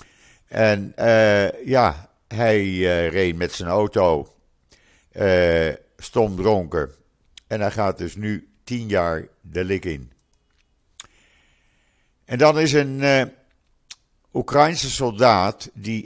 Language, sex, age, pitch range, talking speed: Dutch, male, 50-69, 90-115 Hz, 110 wpm